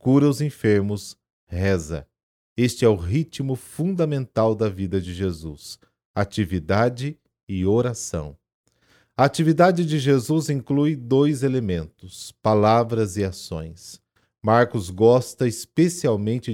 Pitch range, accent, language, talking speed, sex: 100-125 Hz, Brazilian, Portuguese, 105 wpm, male